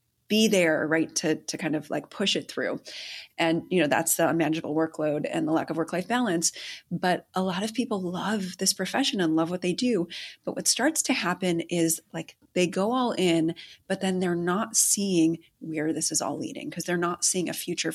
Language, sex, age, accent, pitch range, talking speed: English, female, 30-49, American, 165-210 Hz, 215 wpm